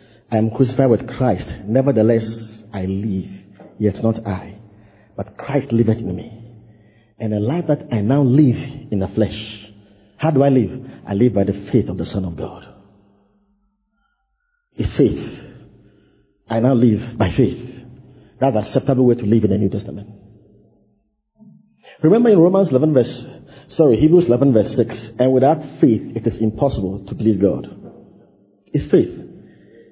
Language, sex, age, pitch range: English, male, 50-69, 105-135 Hz